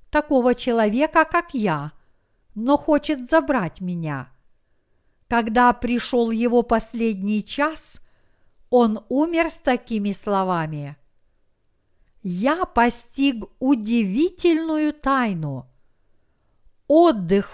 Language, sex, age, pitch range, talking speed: Russian, female, 50-69, 185-275 Hz, 80 wpm